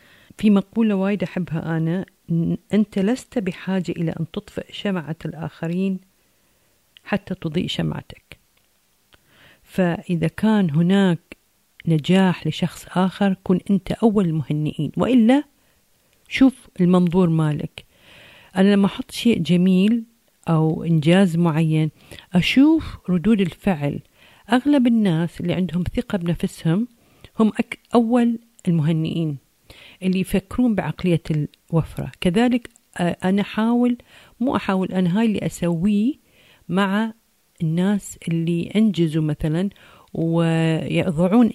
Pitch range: 165-215 Hz